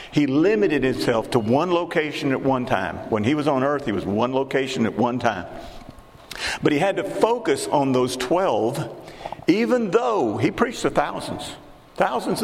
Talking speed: 175 wpm